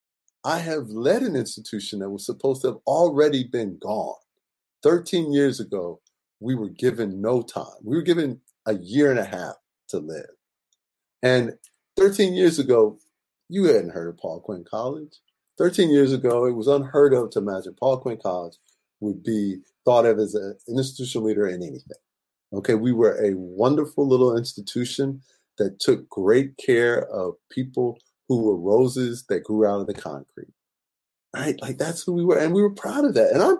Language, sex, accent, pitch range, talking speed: English, male, American, 110-150 Hz, 180 wpm